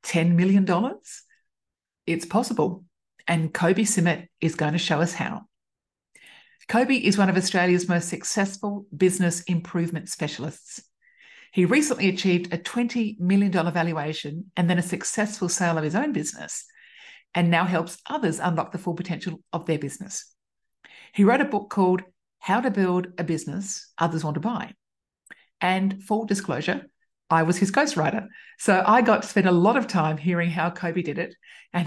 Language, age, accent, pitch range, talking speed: English, 50-69, Australian, 170-205 Hz, 160 wpm